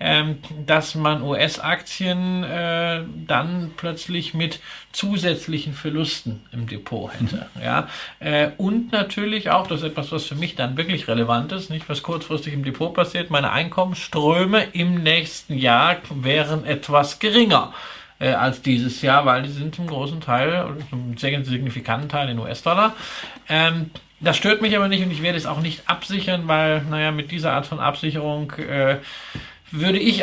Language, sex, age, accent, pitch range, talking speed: German, male, 50-69, German, 135-170 Hz, 160 wpm